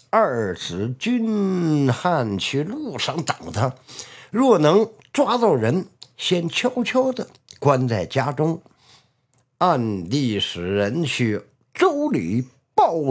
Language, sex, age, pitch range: Chinese, male, 60-79, 130-215 Hz